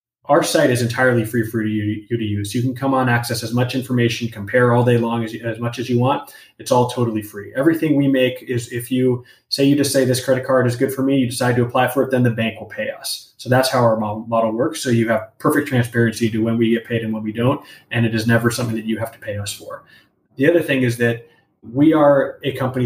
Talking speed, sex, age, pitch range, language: 265 wpm, male, 20-39, 115-130 Hz, English